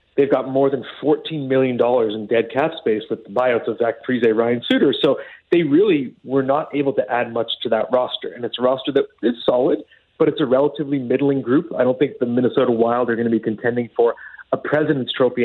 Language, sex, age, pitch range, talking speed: English, male, 30-49, 125-155 Hz, 225 wpm